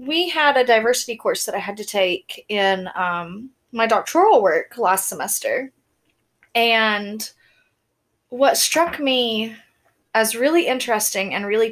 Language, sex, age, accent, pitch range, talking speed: English, female, 20-39, American, 200-255 Hz, 135 wpm